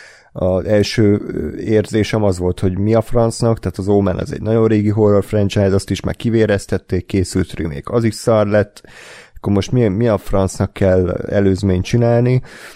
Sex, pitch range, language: male, 95-115 Hz, Hungarian